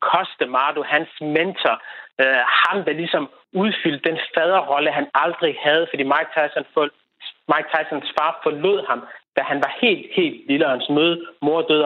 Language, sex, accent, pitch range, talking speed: Danish, male, native, 145-180 Hz, 160 wpm